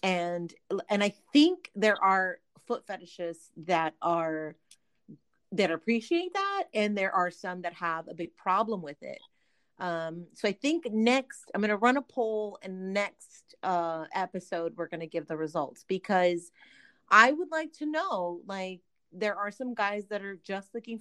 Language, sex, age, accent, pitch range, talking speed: English, female, 30-49, American, 175-235 Hz, 170 wpm